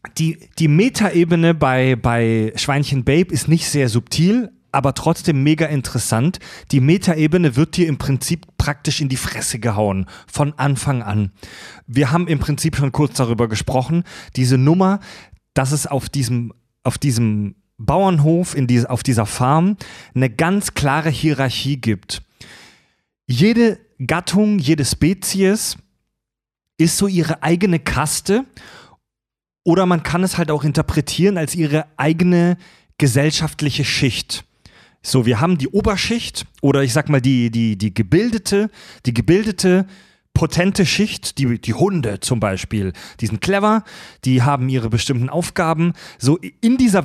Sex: male